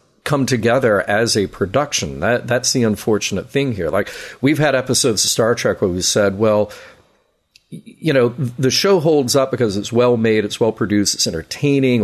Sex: male